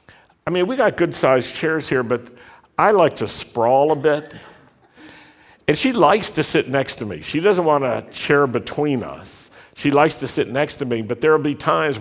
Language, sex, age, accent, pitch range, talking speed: English, male, 60-79, American, 115-150 Hz, 205 wpm